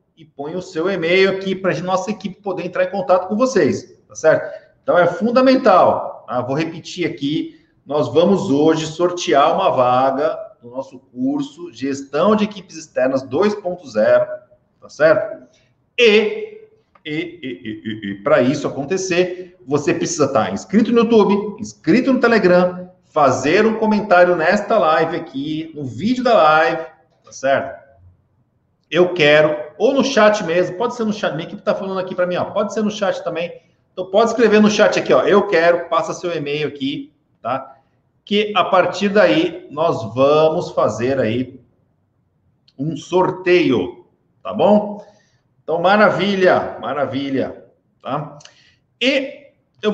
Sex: male